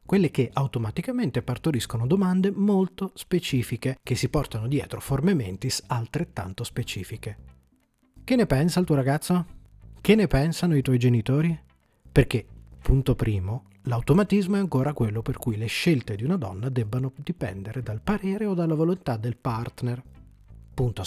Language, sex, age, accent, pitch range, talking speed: Italian, male, 40-59, native, 115-160 Hz, 145 wpm